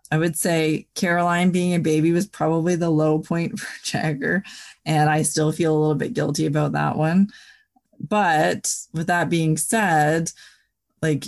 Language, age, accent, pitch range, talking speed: English, 20-39, American, 155-185 Hz, 165 wpm